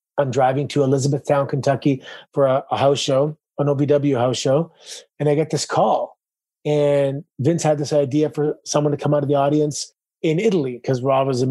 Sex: male